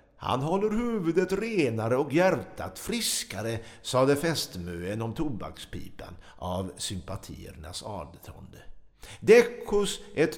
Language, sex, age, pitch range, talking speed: Swedish, male, 50-69, 140-210 Hz, 90 wpm